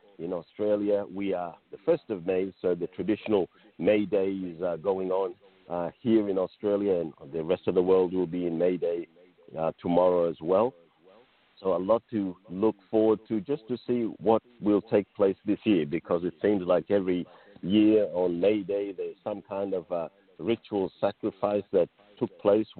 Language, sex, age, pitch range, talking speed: English, male, 50-69, 90-105 Hz, 185 wpm